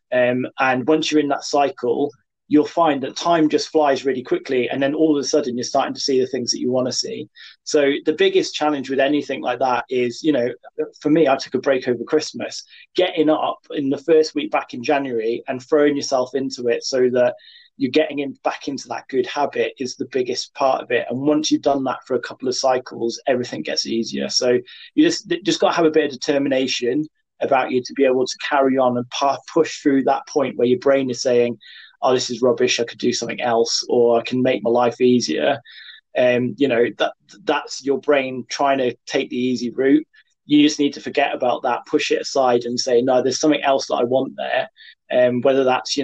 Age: 20-39